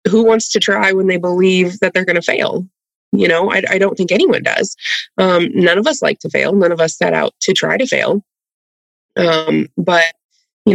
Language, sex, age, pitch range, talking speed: English, female, 20-39, 175-225 Hz, 220 wpm